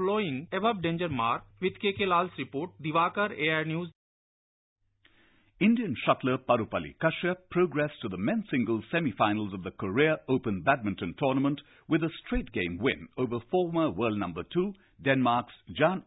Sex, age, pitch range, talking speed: male, 60-79, 120-175 Hz, 110 wpm